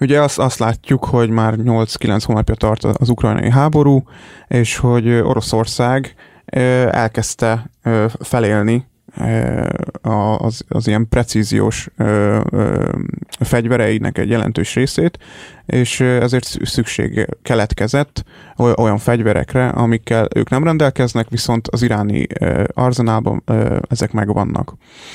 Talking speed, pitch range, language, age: 100 wpm, 110-125 Hz, Hungarian, 20-39